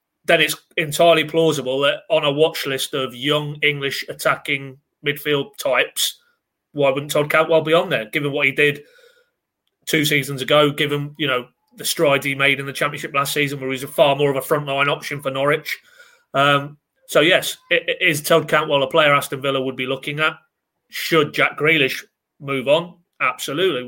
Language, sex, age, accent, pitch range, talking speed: English, male, 30-49, British, 135-160 Hz, 185 wpm